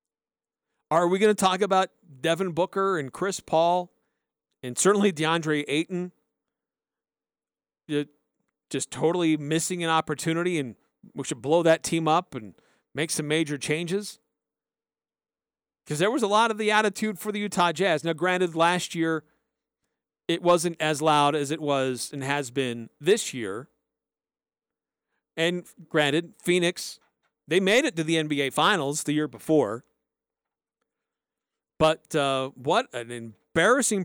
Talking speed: 135 wpm